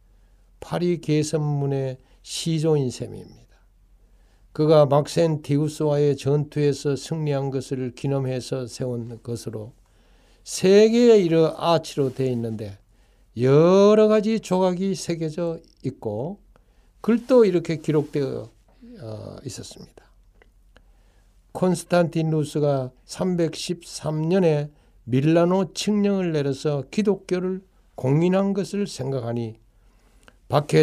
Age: 60-79